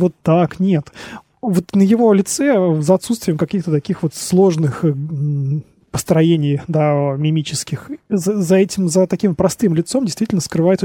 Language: Russian